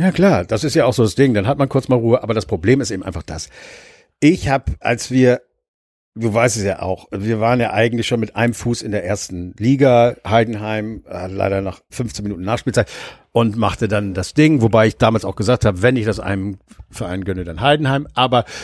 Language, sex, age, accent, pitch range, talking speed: German, male, 60-79, German, 105-125 Hz, 225 wpm